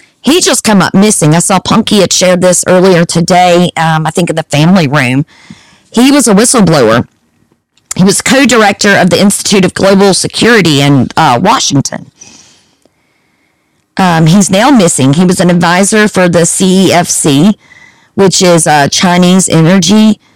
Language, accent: English, American